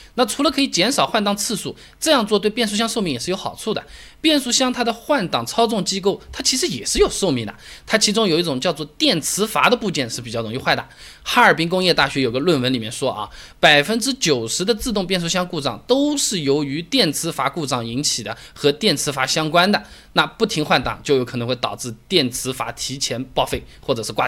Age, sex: 20-39, male